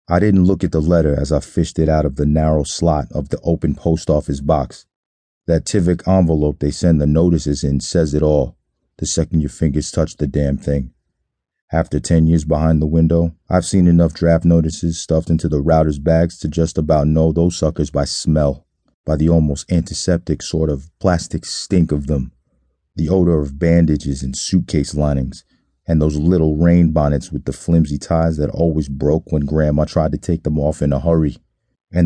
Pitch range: 75-85 Hz